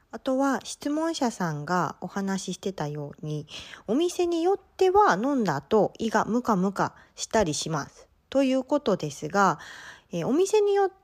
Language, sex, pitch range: Japanese, female, 165-260 Hz